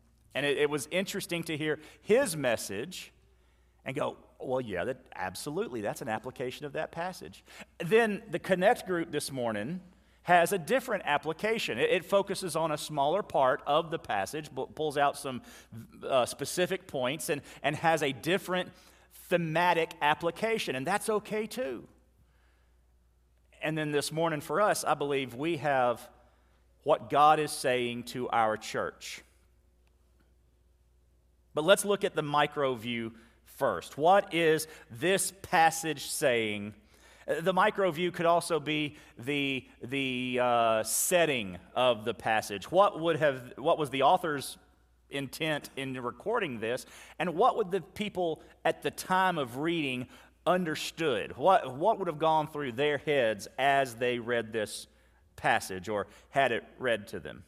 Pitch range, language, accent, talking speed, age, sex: 115-170 Hz, English, American, 145 wpm, 40-59, male